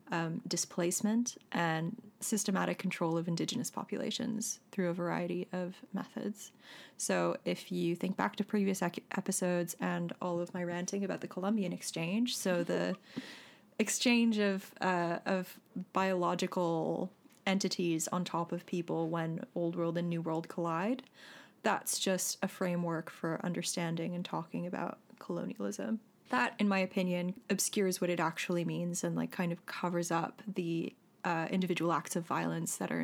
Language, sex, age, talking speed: English, female, 20-39, 150 wpm